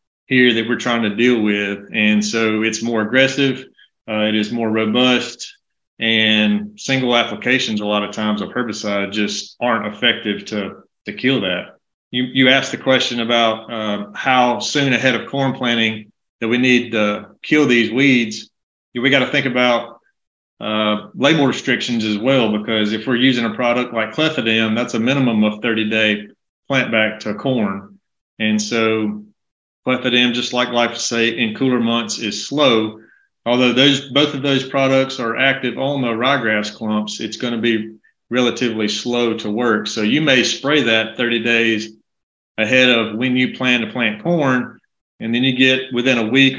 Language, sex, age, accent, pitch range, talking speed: English, male, 30-49, American, 110-125 Hz, 175 wpm